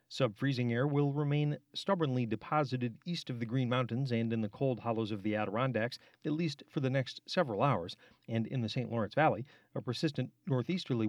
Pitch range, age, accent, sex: 115-140 Hz, 40-59, American, male